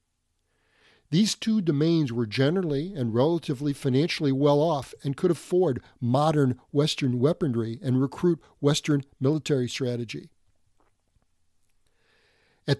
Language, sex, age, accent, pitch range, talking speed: English, male, 50-69, American, 110-155 Hz, 100 wpm